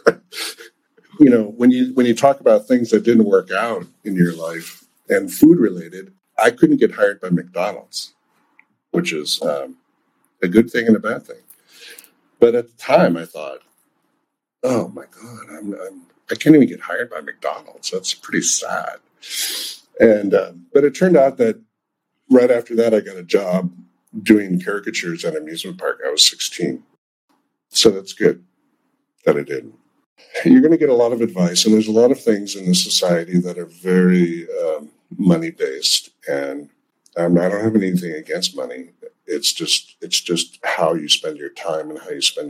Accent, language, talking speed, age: American, English, 180 wpm, 50-69